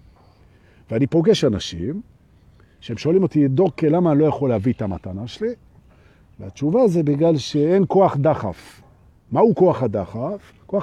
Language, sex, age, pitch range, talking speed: Hebrew, male, 50-69, 110-165 Hz, 120 wpm